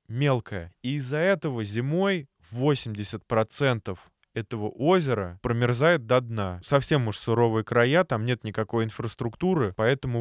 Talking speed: 120 wpm